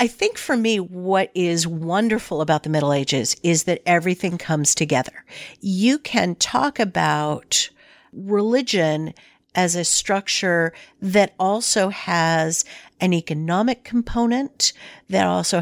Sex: female